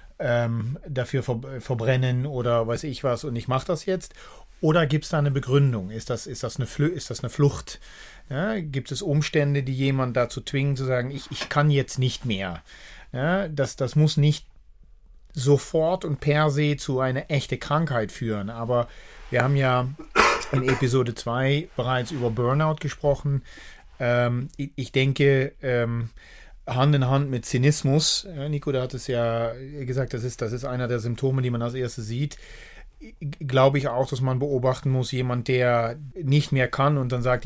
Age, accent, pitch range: 40-59, German, 120-145 Hz